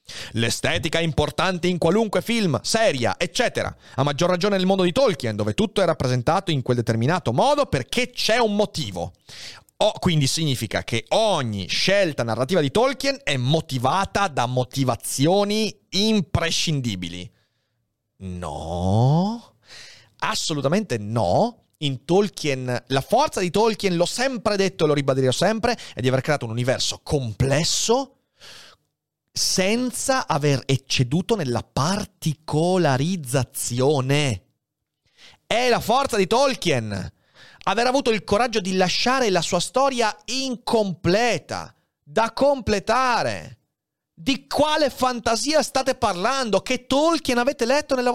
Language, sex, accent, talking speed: Italian, male, native, 120 wpm